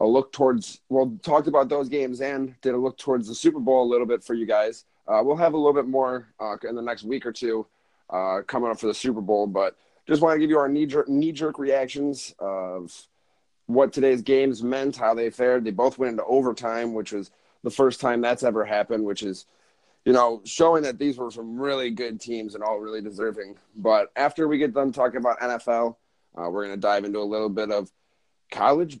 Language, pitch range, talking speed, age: English, 105-130 Hz, 220 wpm, 30-49